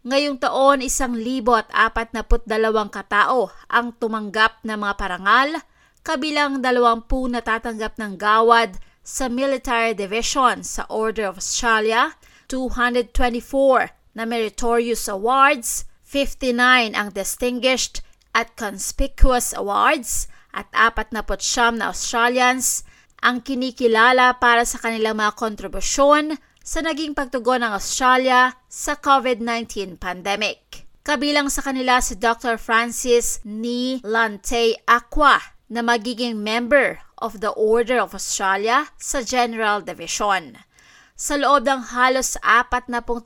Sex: female